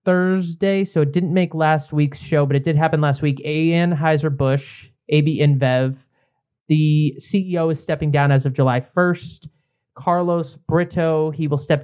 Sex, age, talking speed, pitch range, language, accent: male, 30-49, 170 wpm, 140-170 Hz, English, American